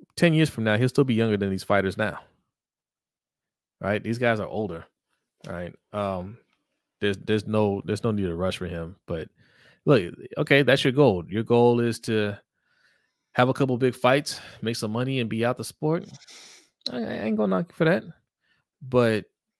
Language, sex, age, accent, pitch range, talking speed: English, male, 20-39, American, 95-125 Hz, 190 wpm